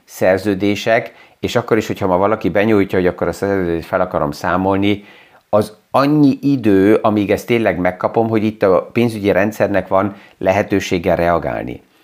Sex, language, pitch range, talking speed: male, Hungarian, 100-120 Hz, 150 wpm